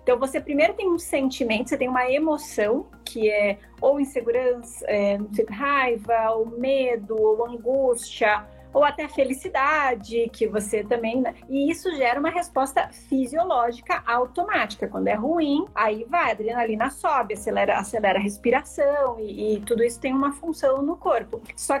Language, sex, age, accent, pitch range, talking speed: Portuguese, female, 30-49, Brazilian, 235-285 Hz, 150 wpm